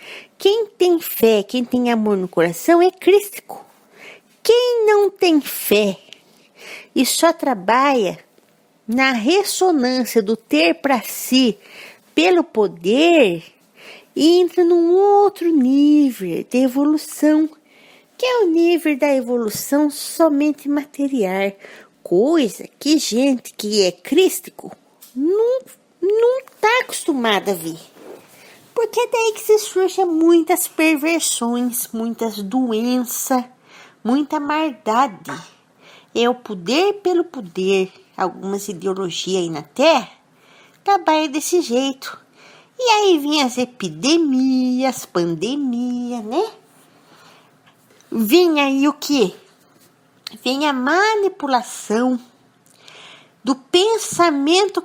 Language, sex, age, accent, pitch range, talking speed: Portuguese, female, 50-69, Brazilian, 235-345 Hz, 100 wpm